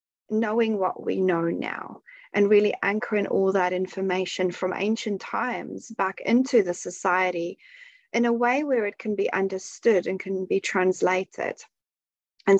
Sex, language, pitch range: female, English, 190-240 Hz